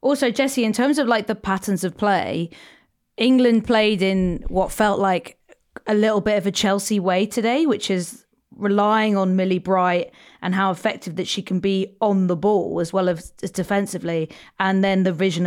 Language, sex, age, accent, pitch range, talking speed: English, female, 30-49, British, 175-210 Hz, 185 wpm